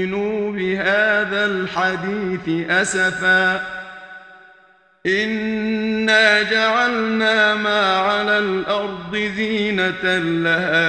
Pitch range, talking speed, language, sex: 165-210 Hz, 60 wpm, Arabic, male